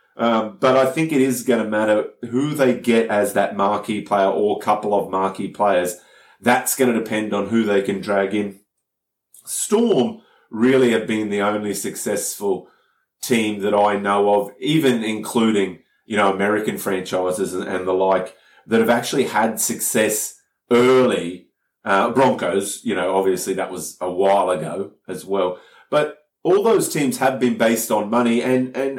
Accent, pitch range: Australian, 100-125 Hz